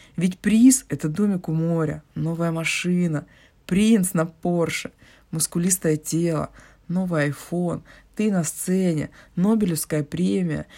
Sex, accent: female, native